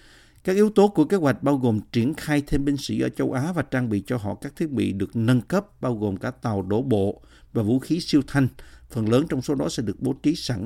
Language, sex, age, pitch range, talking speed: Vietnamese, male, 50-69, 105-145 Hz, 270 wpm